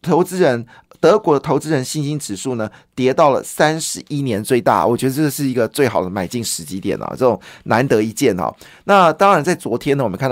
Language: Chinese